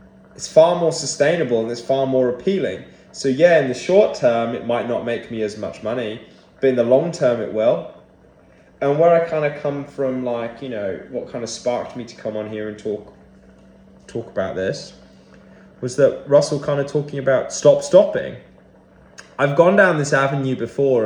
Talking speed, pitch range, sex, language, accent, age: 195 wpm, 110-155 Hz, male, English, British, 20-39